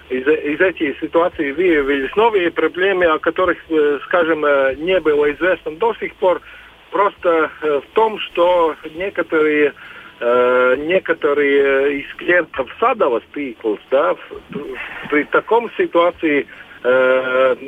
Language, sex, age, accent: Russian, male, 50-69, native